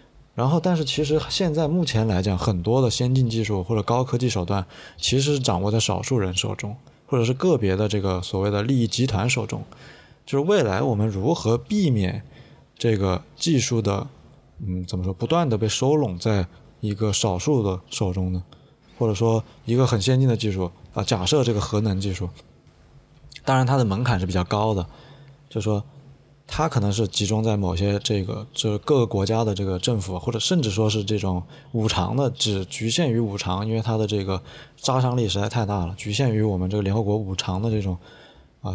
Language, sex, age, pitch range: Chinese, male, 20-39, 100-130 Hz